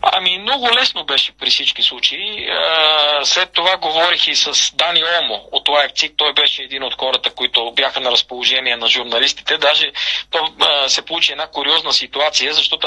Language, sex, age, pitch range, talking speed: Bulgarian, male, 40-59, 140-175 Hz, 175 wpm